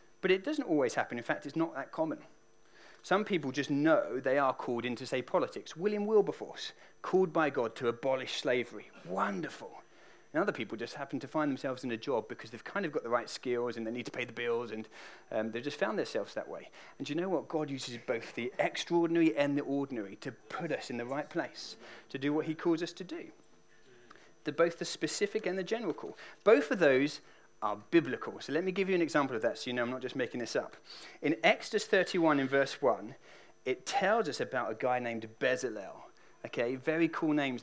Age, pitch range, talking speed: 30-49, 125-175 Hz, 225 wpm